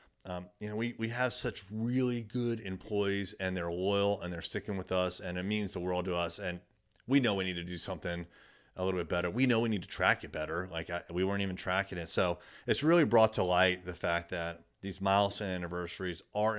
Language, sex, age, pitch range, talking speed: English, male, 30-49, 90-100 Hz, 235 wpm